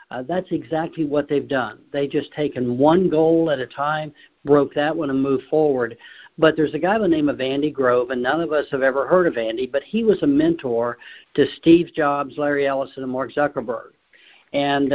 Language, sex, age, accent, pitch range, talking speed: English, male, 60-79, American, 135-170 Hz, 215 wpm